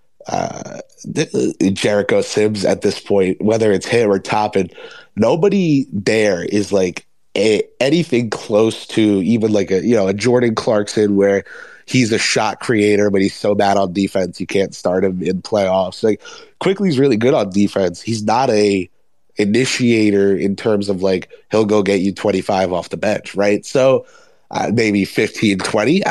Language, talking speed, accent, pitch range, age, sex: English, 165 wpm, American, 100-165 Hz, 20-39, male